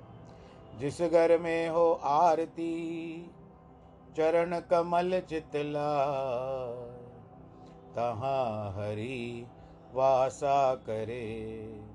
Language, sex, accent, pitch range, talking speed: Hindi, male, native, 110-140 Hz, 60 wpm